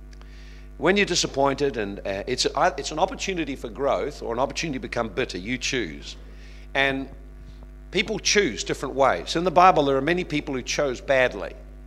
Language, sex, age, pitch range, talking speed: English, male, 50-69, 115-155 Hz, 170 wpm